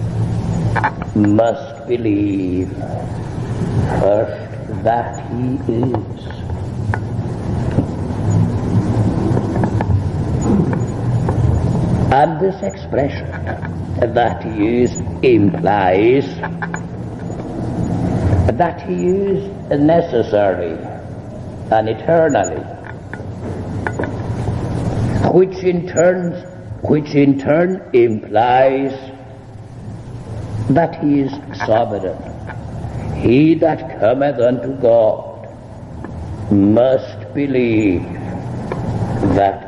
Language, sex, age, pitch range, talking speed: English, male, 60-79, 100-125 Hz, 55 wpm